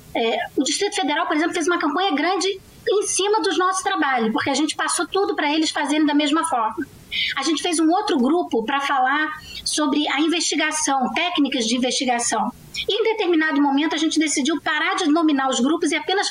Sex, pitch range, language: female, 275-345 Hz, Portuguese